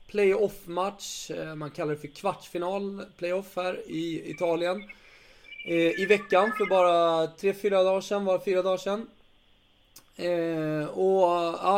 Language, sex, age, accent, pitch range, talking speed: English, male, 20-39, Swedish, 155-195 Hz, 120 wpm